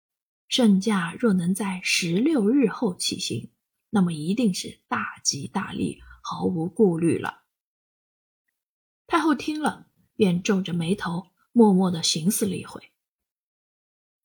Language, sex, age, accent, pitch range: Chinese, female, 20-39, native, 190-235 Hz